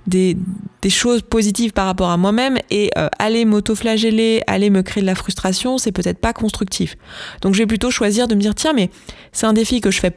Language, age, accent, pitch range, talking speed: French, 20-39, French, 185-220 Hz, 230 wpm